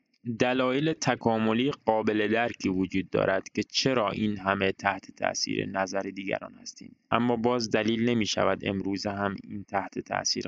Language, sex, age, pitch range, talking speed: Persian, male, 20-39, 100-120 Hz, 145 wpm